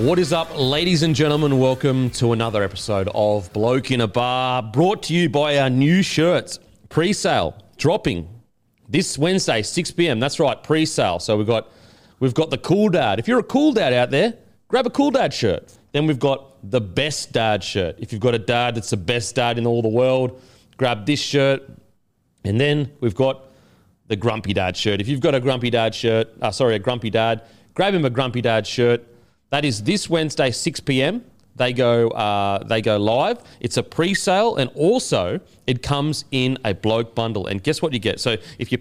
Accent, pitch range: Australian, 110-145 Hz